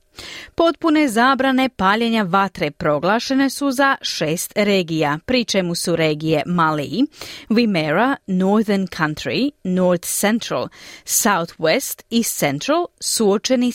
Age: 30-49